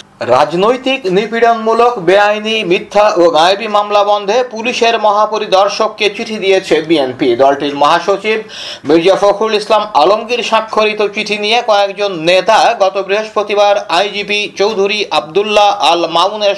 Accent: native